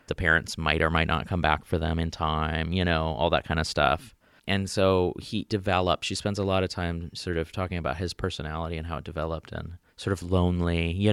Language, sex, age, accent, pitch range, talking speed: English, male, 30-49, American, 85-100 Hz, 235 wpm